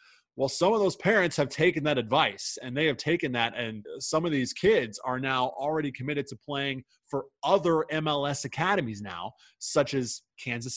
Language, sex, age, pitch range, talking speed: English, male, 20-39, 110-135 Hz, 185 wpm